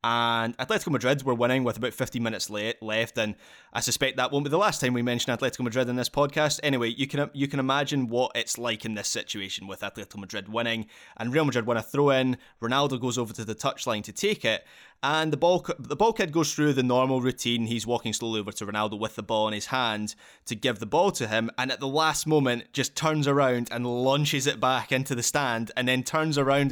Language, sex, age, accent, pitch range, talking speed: English, male, 20-39, British, 115-135 Hz, 240 wpm